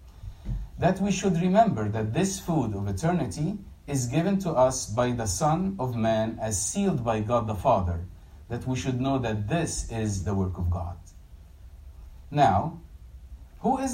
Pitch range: 90-145 Hz